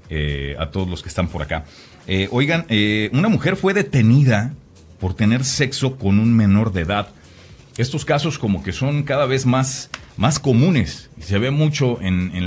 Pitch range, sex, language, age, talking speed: 95-130 Hz, male, Spanish, 40-59, 185 wpm